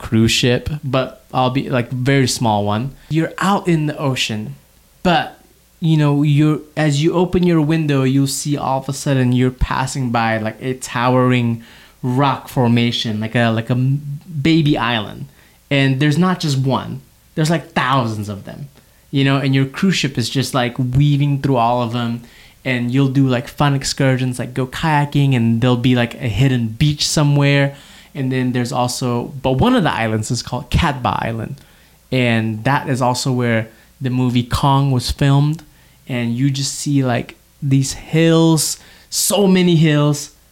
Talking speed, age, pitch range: 175 wpm, 20-39, 125-145 Hz